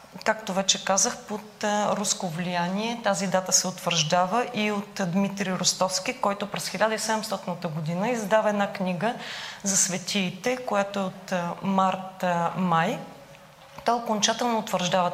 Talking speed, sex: 120 wpm, female